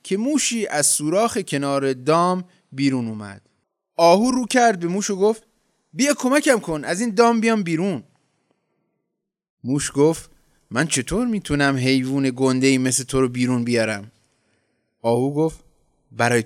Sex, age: male, 30-49